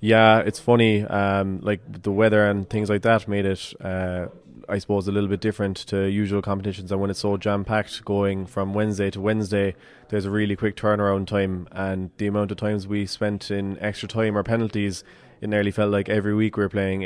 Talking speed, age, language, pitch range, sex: 210 wpm, 20-39, English, 100-105 Hz, male